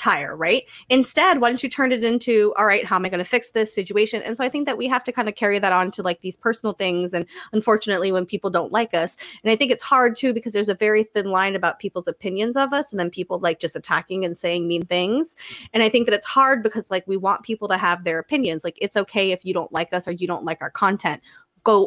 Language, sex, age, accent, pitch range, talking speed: English, female, 20-39, American, 180-230 Hz, 275 wpm